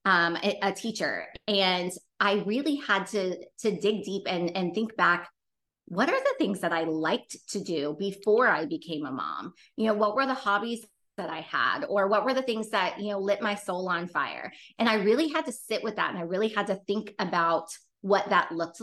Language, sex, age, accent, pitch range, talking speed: English, female, 20-39, American, 185-235 Hz, 220 wpm